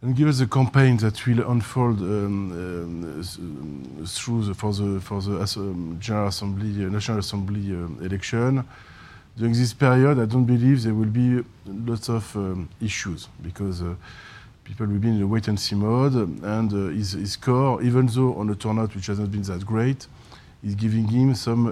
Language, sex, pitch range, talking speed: English, male, 95-120 Hz, 175 wpm